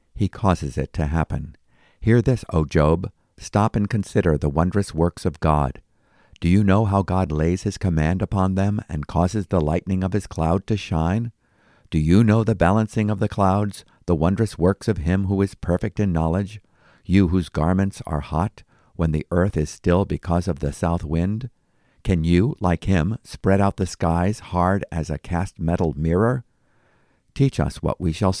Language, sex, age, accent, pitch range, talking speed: English, male, 50-69, American, 80-100 Hz, 185 wpm